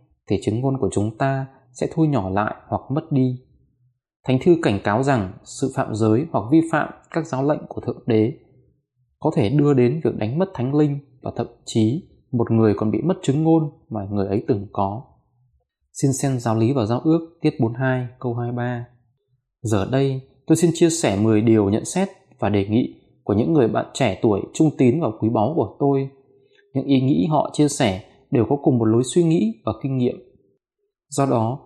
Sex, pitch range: male, 110-145 Hz